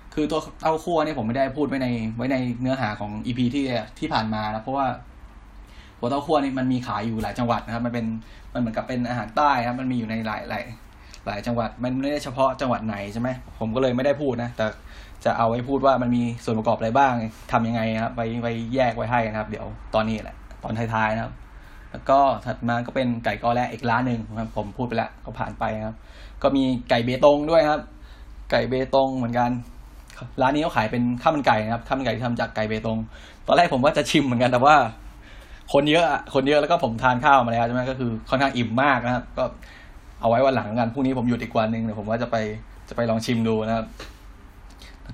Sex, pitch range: male, 110-130 Hz